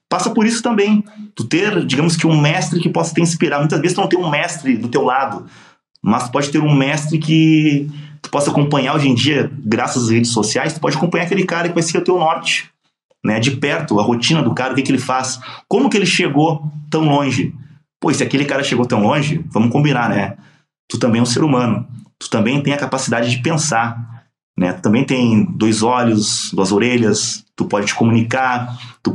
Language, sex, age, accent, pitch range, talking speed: Portuguese, male, 30-49, Brazilian, 120-160 Hz, 215 wpm